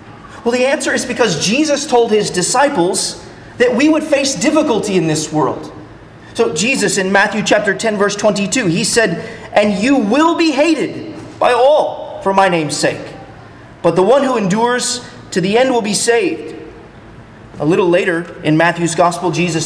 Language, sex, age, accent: English, male, 30-49, American